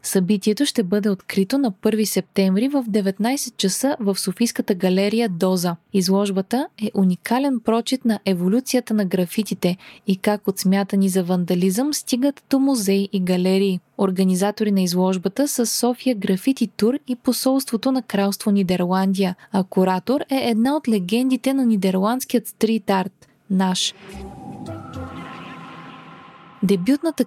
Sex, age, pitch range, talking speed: female, 20-39, 195-250 Hz, 130 wpm